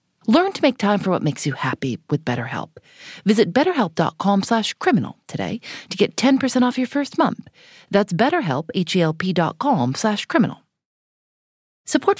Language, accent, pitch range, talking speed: English, American, 155-230 Hz, 140 wpm